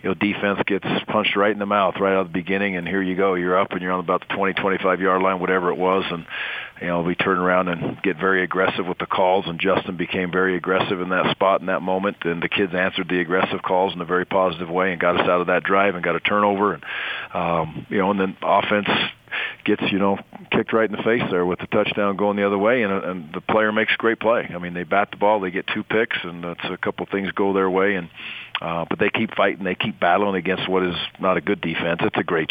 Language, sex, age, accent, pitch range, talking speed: English, male, 40-59, American, 90-100 Hz, 270 wpm